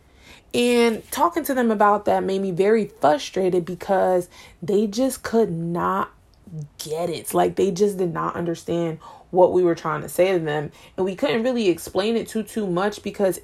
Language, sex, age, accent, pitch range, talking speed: English, female, 20-39, American, 175-225 Hz, 185 wpm